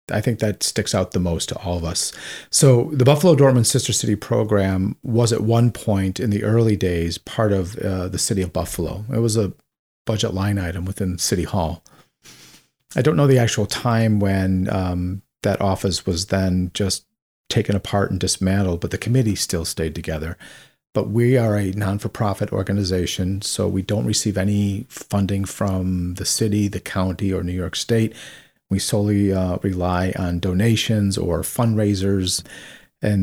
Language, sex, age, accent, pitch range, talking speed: English, male, 40-59, American, 95-110 Hz, 170 wpm